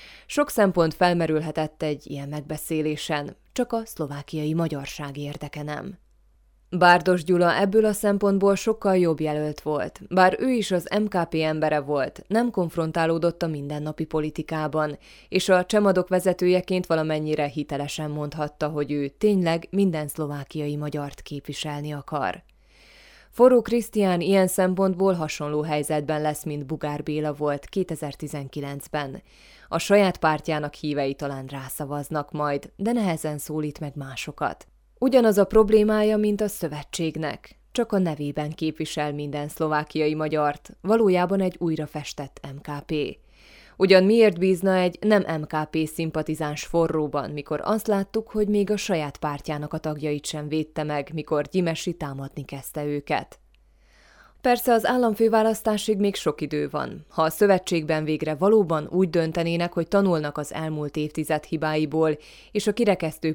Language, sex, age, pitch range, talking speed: Hungarian, female, 20-39, 150-185 Hz, 130 wpm